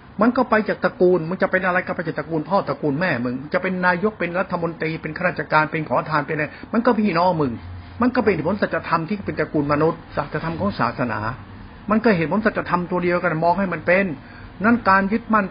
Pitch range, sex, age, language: 150-195 Hz, male, 60-79, Thai